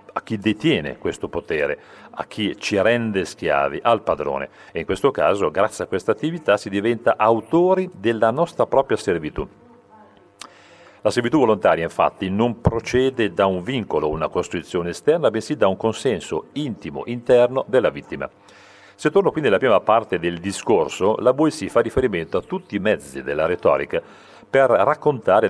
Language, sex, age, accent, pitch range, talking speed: Italian, male, 40-59, native, 95-135 Hz, 160 wpm